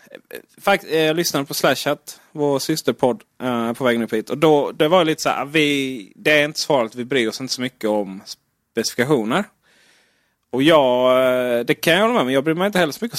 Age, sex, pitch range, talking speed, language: 30-49, male, 120-160 Hz, 210 wpm, Swedish